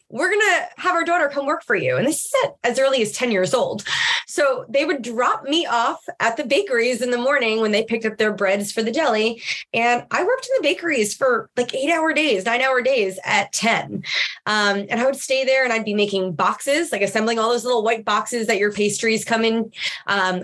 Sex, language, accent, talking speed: female, English, American, 240 wpm